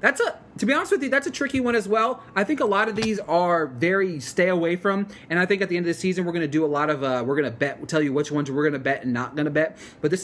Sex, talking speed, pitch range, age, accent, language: male, 345 wpm, 155-220 Hz, 30-49, American, English